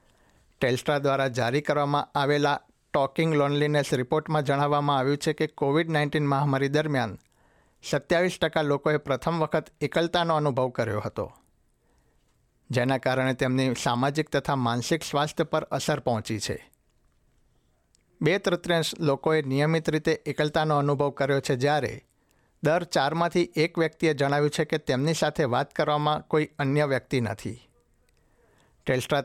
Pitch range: 130-155 Hz